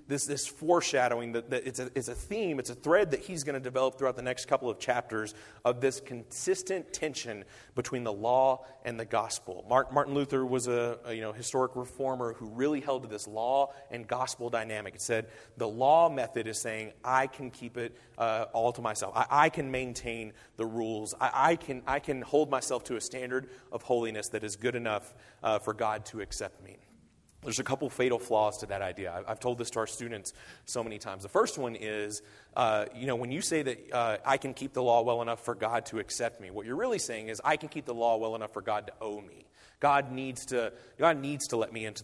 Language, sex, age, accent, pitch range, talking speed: English, male, 30-49, American, 110-130 Hz, 235 wpm